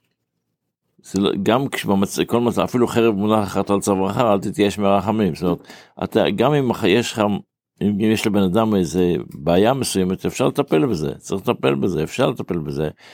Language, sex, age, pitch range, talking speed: Hebrew, male, 60-79, 90-110 Hz, 160 wpm